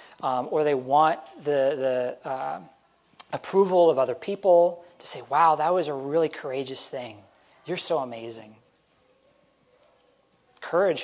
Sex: male